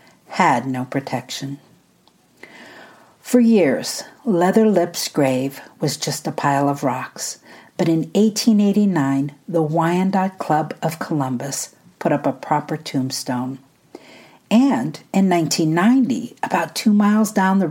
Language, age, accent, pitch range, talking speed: English, 50-69, American, 140-195 Hz, 120 wpm